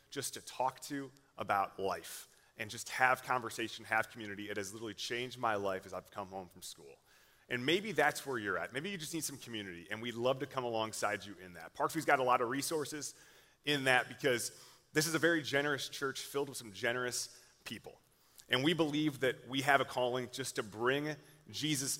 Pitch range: 120-145 Hz